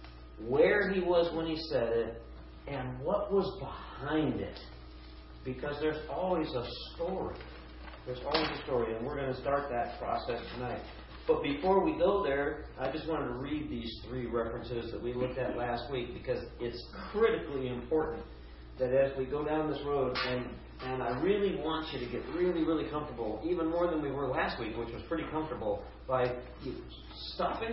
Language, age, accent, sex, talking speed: English, 50-69, American, male, 180 wpm